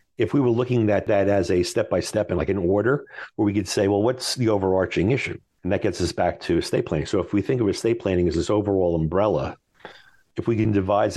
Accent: American